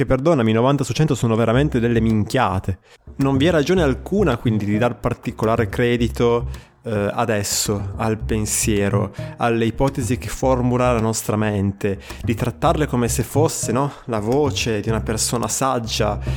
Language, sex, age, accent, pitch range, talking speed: Italian, male, 20-39, native, 105-125 Hz, 150 wpm